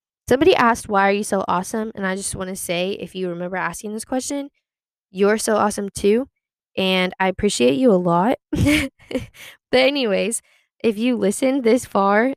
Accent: American